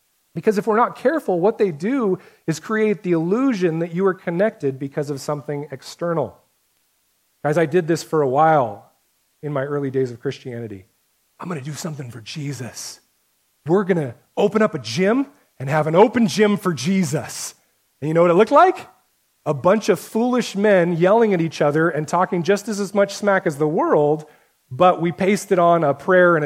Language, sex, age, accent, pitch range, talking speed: English, male, 30-49, American, 140-195 Hz, 190 wpm